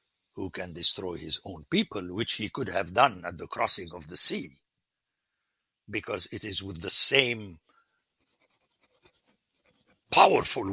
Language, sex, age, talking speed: English, male, 60-79, 135 wpm